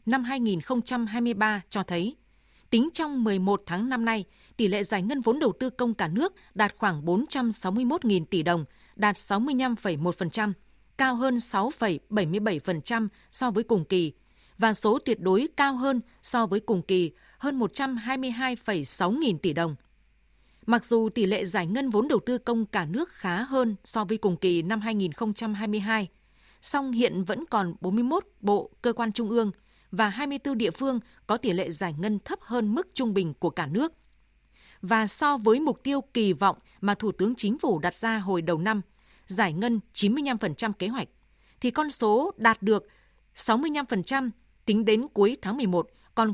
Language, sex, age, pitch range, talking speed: Vietnamese, female, 20-39, 195-245 Hz, 170 wpm